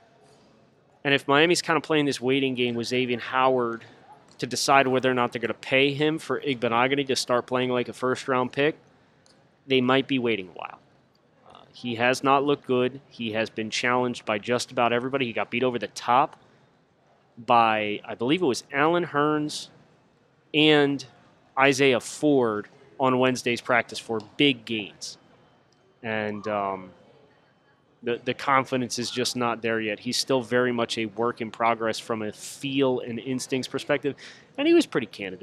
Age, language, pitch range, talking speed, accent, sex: 30-49, English, 115-135 Hz, 175 wpm, American, male